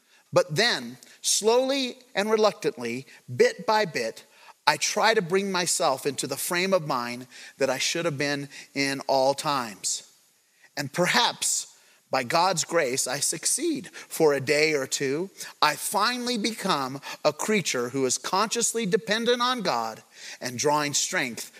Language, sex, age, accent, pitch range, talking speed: English, male, 40-59, American, 155-220 Hz, 145 wpm